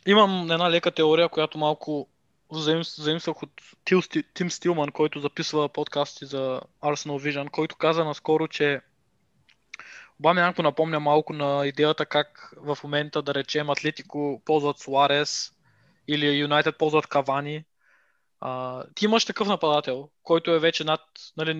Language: Bulgarian